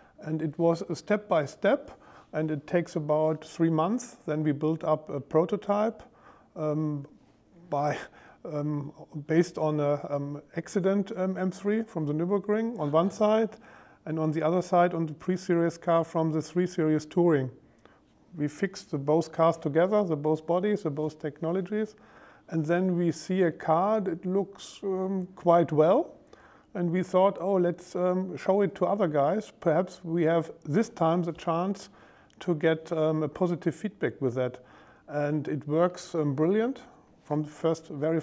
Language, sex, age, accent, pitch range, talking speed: English, male, 50-69, German, 155-190 Hz, 160 wpm